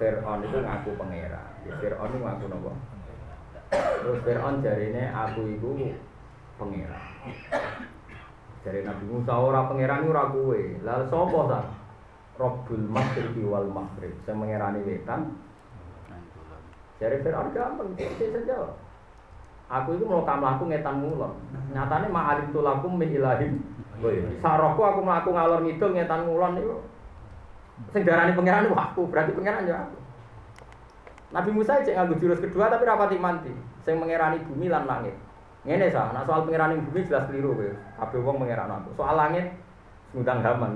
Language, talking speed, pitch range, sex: Indonesian, 145 wpm, 115-160 Hz, male